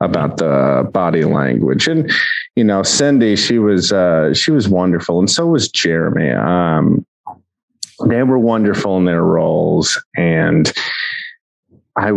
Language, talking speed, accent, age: English, 135 wpm, American, 30-49